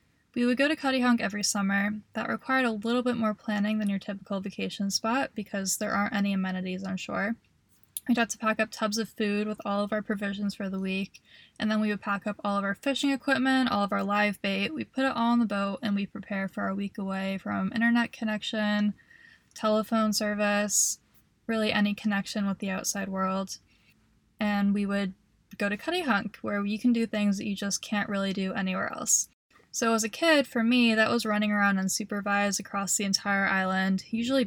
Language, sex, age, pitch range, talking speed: English, female, 10-29, 200-230 Hz, 205 wpm